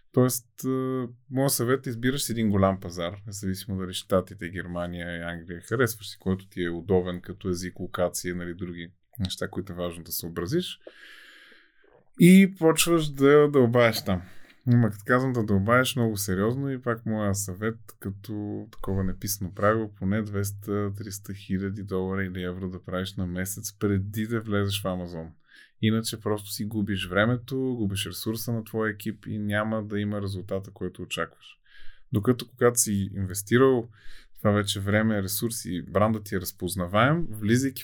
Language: Bulgarian